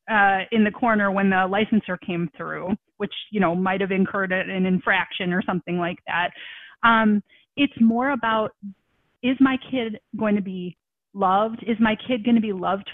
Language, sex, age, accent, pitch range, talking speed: English, female, 30-49, American, 195-235 Hz, 180 wpm